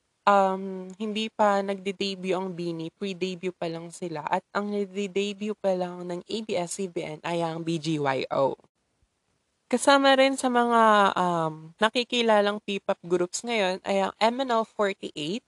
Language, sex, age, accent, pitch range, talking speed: English, female, 20-39, Filipino, 180-230 Hz, 120 wpm